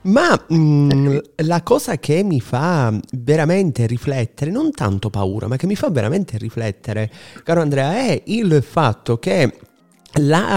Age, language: 30-49, Italian